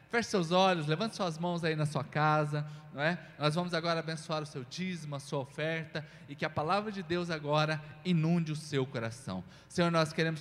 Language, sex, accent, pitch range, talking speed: Portuguese, male, Brazilian, 155-230 Hz, 210 wpm